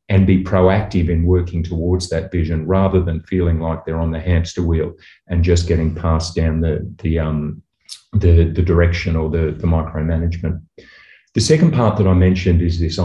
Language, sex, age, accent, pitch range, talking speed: English, male, 40-59, Australian, 85-95 Hz, 185 wpm